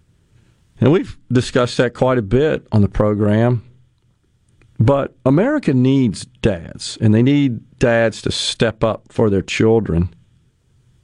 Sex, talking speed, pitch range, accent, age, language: male, 130 wpm, 110-125 Hz, American, 40-59, English